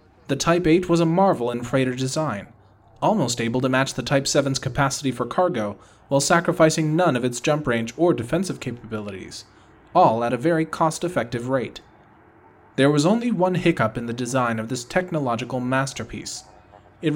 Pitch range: 115-155 Hz